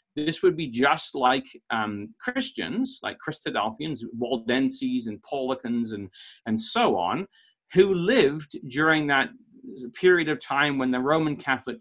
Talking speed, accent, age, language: 135 wpm, British, 40-59, English